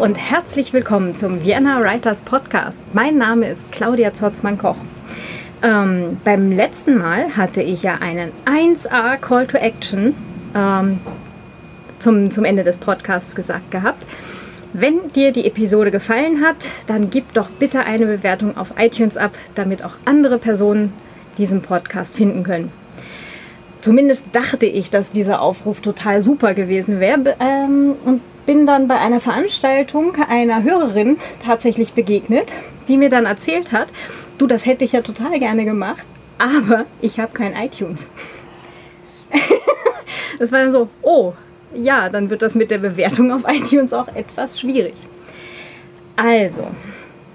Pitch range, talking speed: 200-260 Hz, 145 wpm